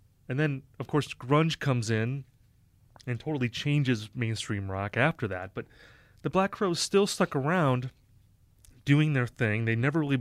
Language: English